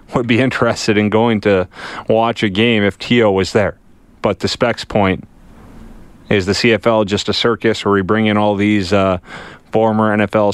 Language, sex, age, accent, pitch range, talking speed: English, male, 30-49, American, 90-110 Hz, 180 wpm